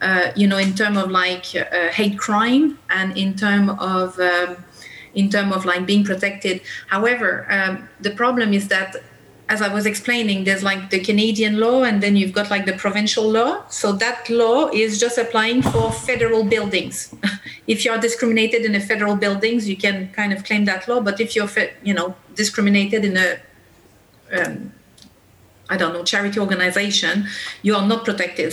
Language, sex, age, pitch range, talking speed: Danish, female, 30-49, 195-220 Hz, 185 wpm